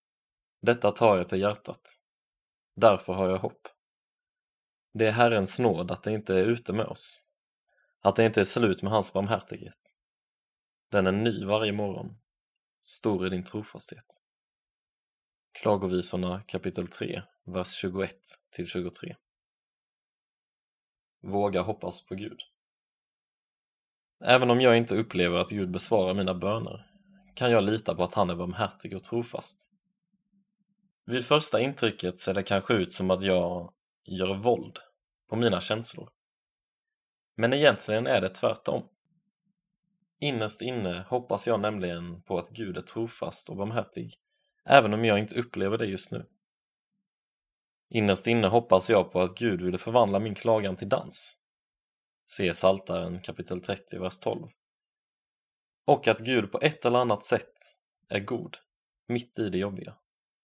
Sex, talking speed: male, 140 wpm